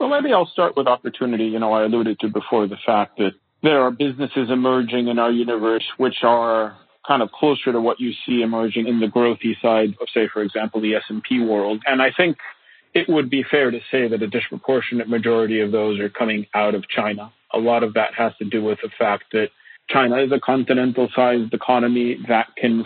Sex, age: male, 30-49